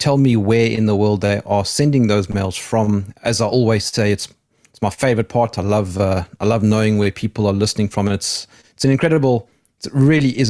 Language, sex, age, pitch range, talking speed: English, male, 30-49, 100-120 Hz, 225 wpm